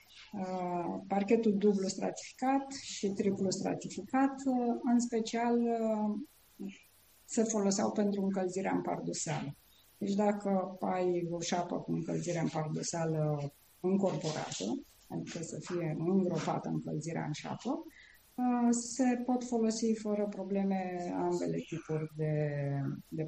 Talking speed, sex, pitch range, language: 115 wpm, female, 165-220 Hz, Romanian